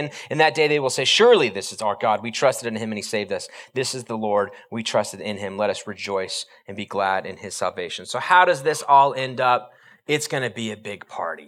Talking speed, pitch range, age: 260 wpm, 110-155 Hz, 30-49